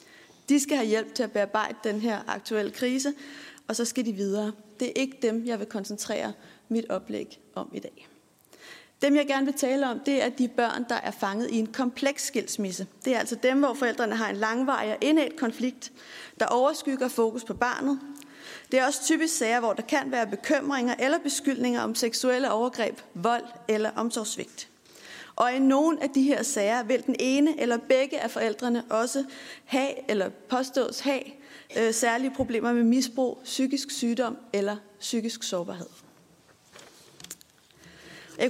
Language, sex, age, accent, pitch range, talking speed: Danish, female, 30-49, native, 230-275 Hz, 165 wpm